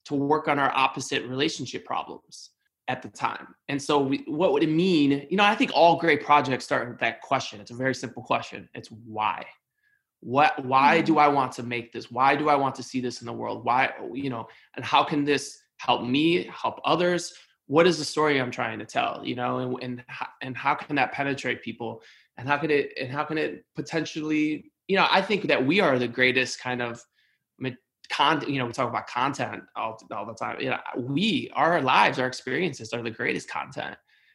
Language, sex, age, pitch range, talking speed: English, male, 20-39, 120-150 Hz, 220 wpm